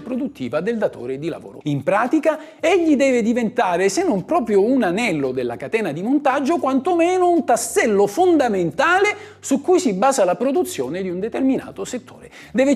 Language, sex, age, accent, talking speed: Italian, male, 50-69, native, 160 wpm